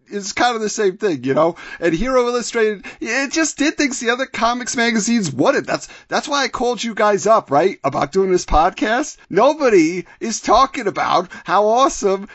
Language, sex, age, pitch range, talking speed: English, male, 40-59, 190-255 Hz, 190 wpm